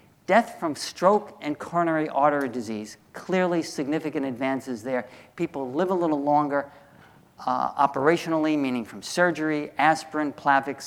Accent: American